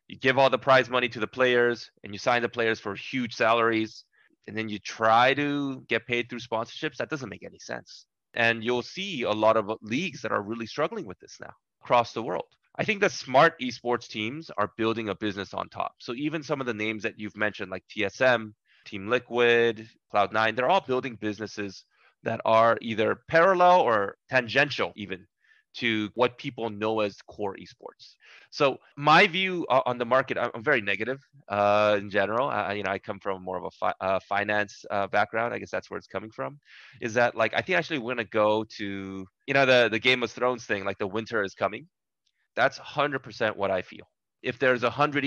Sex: male